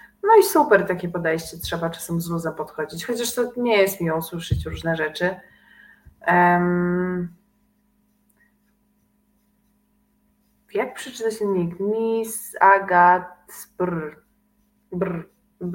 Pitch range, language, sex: 170-210 Hz, Polish, female